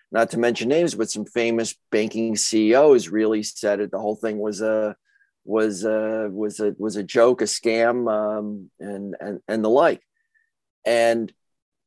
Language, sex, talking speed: English, male, 165 wpm